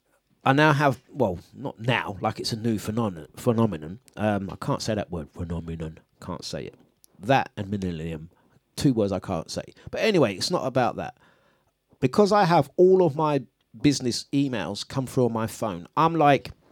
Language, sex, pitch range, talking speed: English, male, 115-155 Hz, 180 wpm